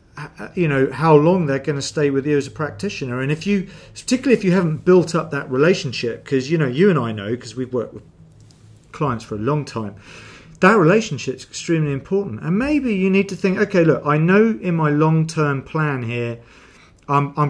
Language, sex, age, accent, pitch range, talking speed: English, male, 40-59, British, 120-160 Hz, 210 wpm